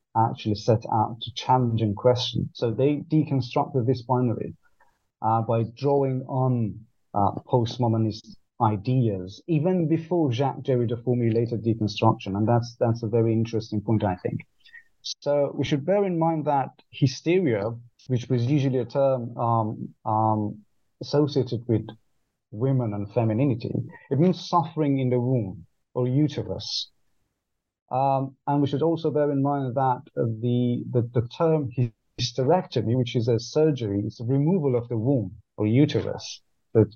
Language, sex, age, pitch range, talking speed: English, male, 30-49, 115-140 Hz, 145 wpm